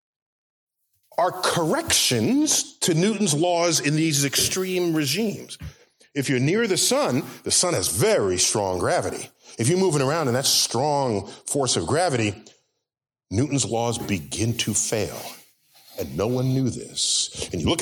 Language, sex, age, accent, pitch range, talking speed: English, male, 40-59, American, 115-175 Hz, 145 wpm